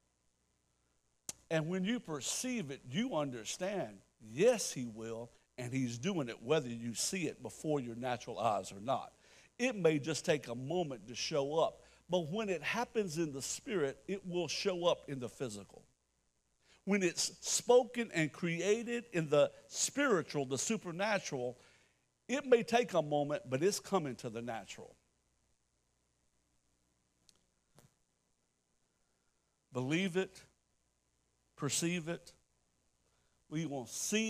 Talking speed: 130 wpm